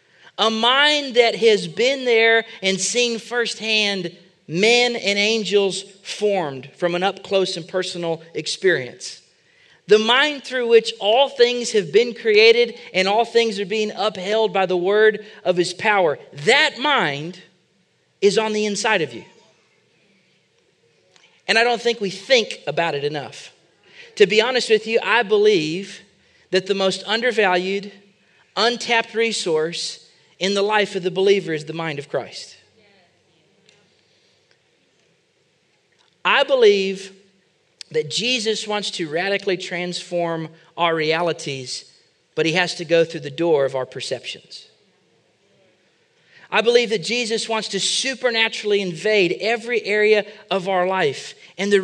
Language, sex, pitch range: English, male, 185-235 Hz